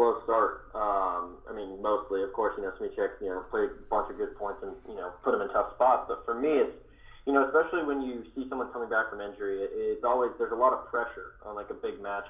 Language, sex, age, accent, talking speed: English, male, 20-39, American, 265 wpm